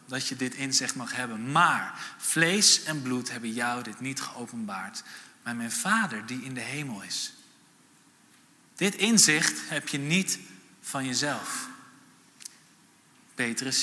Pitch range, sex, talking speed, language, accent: 125-180 Hz, male, 135 wpm, Dutch, Dutch